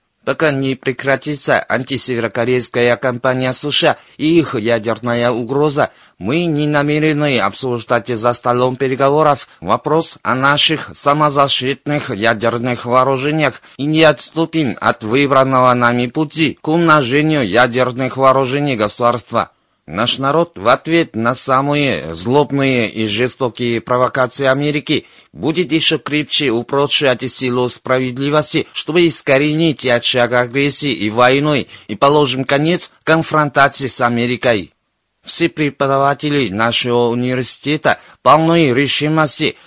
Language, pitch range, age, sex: Russian, 125-150 Hz, 30-49, male